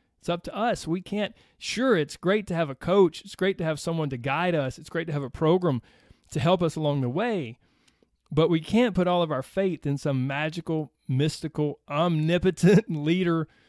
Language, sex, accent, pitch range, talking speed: English, male, American, 130-180 Hz, 205 wpm